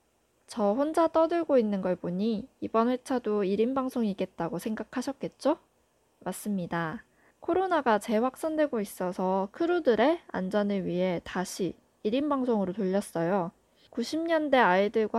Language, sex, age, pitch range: Korean, female, 20-39, 195-270 Hz